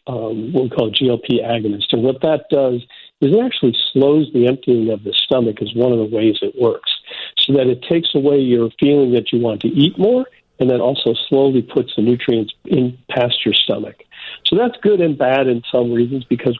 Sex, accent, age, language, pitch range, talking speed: male, American, 50-69, English, 120-150 Hz, 215 wpm